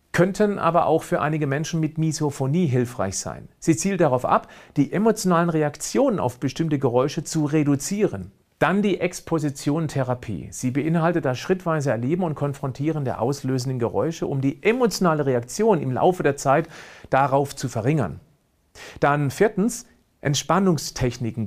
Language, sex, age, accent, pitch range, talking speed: German, male, 40-59, German, 130-170 Hz, 135 wpm